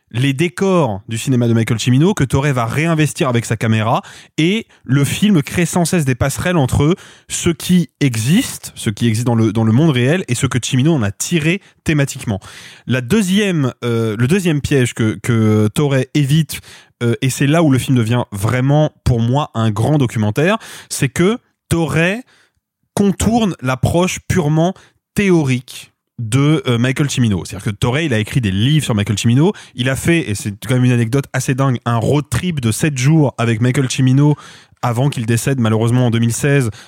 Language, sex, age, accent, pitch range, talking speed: French, male, 20-39, French, 120-155 Hz, 185 wpm